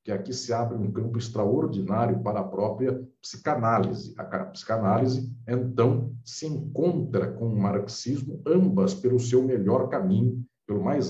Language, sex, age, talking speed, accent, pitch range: Portuguese, male, 50-69, 140 wpm, Brazilian, 95-125 Hz